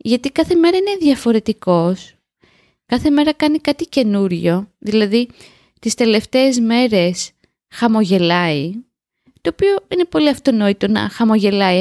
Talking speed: 110 wpm